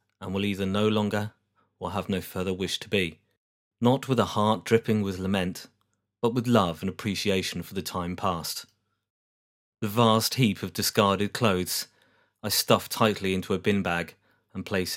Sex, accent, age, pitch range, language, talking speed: male, British, 30-49, 95-110 Hz, English, 170 wpm